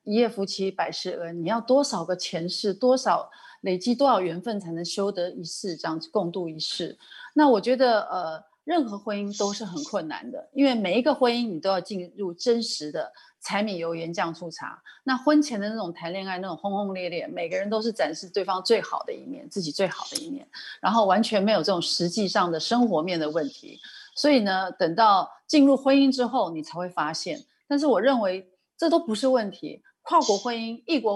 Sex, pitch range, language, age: female, 180-255 Hz, Chinese, 30-49